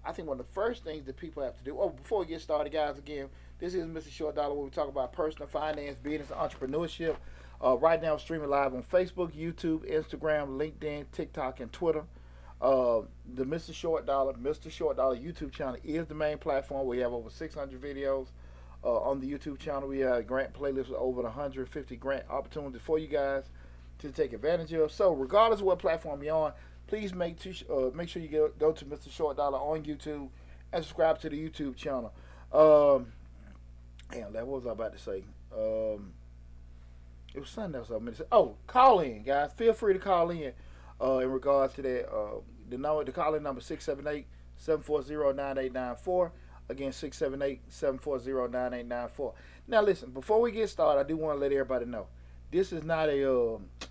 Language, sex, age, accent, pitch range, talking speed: English, male, 40-59, American, 125-155 Hz, 210 wpm